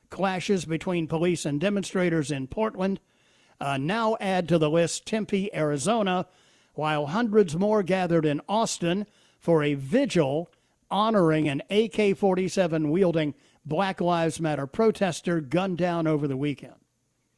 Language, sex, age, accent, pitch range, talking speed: English, male, 50-69, American, 155-220 Hz, 125 wpm